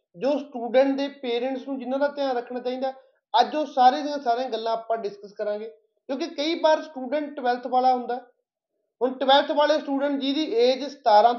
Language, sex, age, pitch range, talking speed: Punjabi, male, 30-49, 235-275 Hz, 180 wpm